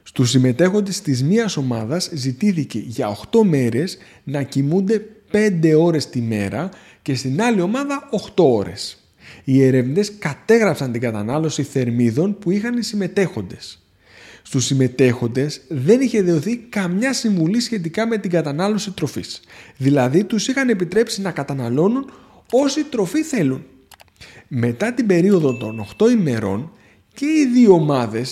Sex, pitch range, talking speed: male, 130-210 Hz, 130 wpm